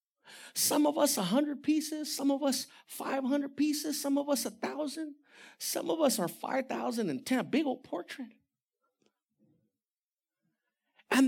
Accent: American